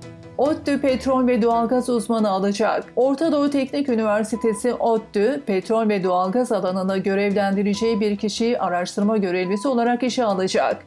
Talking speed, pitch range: 125 wpm, 205-255 Hz